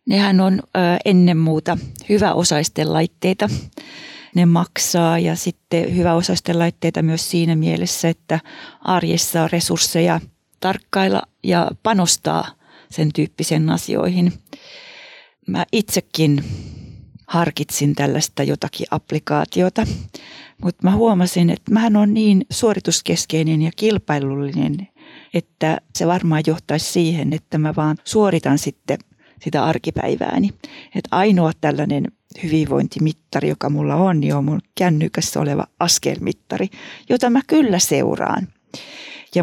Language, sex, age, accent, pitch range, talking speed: Finnish, female, 40-59, native, 155-190 Hz, 110 wpm